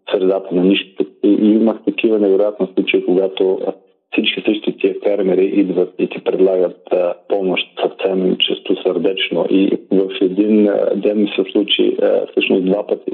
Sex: male